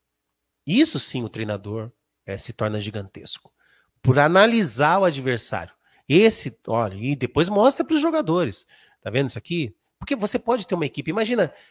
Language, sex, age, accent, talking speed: English, male, 40-59, Brazilian, 160 wpm